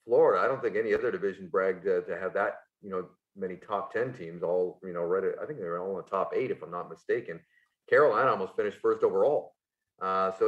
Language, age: English, 40-59